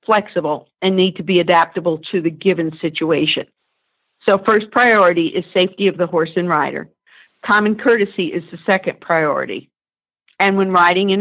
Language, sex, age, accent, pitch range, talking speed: English, female, 50-69, American, 170-200 Hz, 160 wpm